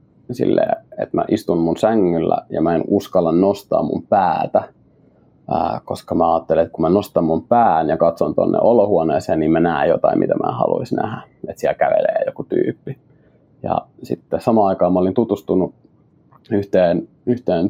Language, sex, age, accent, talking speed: Finnish, male, 30-49, native, 165 wpm